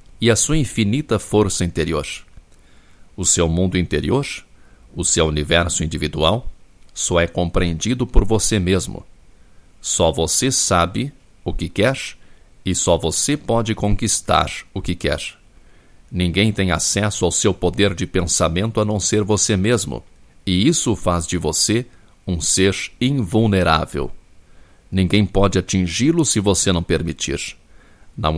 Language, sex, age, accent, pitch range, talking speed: Portuguese, male, 60-79, Brazilian, 85-110 Hz, 135 wpm